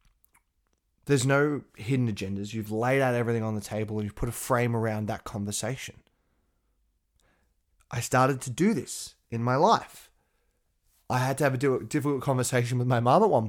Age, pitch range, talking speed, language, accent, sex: 20-39, 110-130 Hz, 175 wpm, English, Australian, male